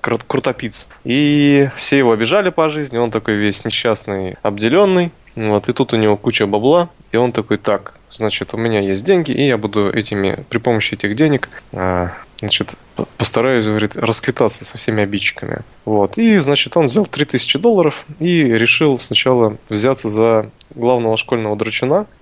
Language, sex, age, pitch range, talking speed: Russian, male, 20-39, 105-135 Hz, 155 wpm